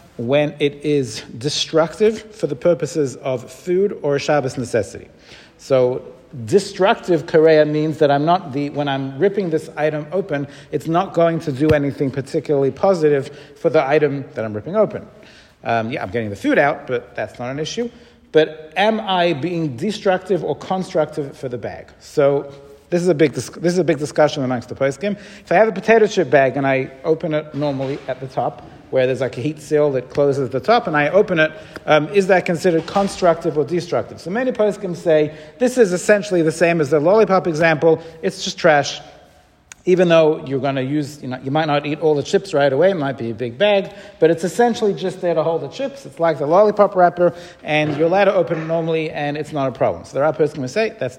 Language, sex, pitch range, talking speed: English, male, 145-185 Hz, 220 wpm